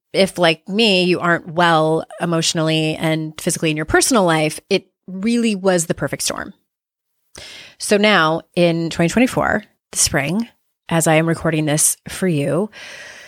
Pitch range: 155-190 Hz